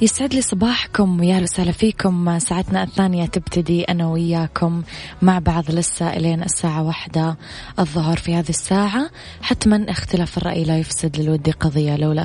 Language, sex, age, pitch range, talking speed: Arabic, female, 20-39, 160-185 Hz, 140 wpm